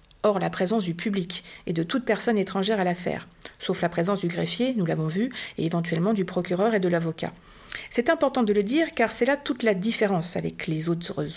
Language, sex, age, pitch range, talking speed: French, female, 50-69, 175-220 Hz, 215 wpm